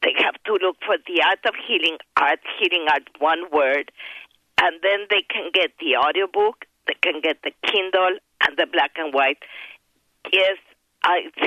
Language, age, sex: English, 50-69, female